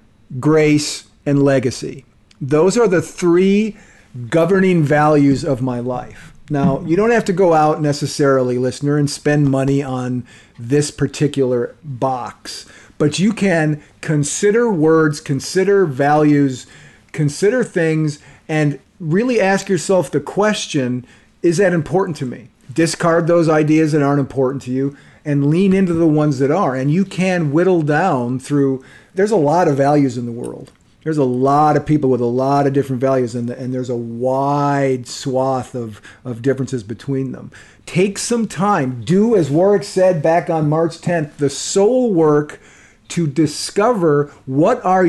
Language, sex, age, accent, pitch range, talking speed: English, male, 40-59, American, 130-165 Hz, 155 wpm